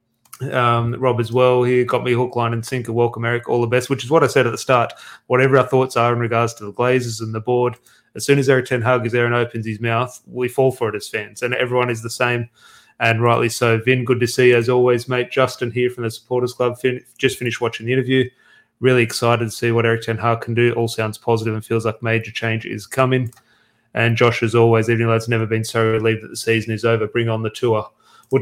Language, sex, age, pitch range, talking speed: English, male, 30-49, 115-125 Hz, 260 wpm